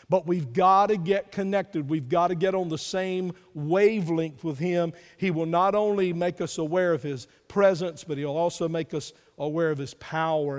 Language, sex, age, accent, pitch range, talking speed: English, male, 50-69, American, 175-230 Hz, 200 wpm